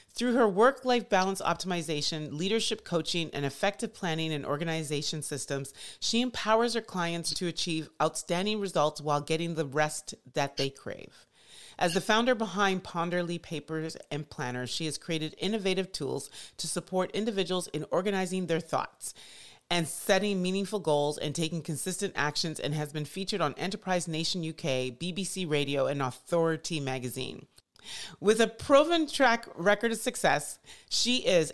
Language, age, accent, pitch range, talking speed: English, 30-49, American, 155-220 Hz, 150 wpm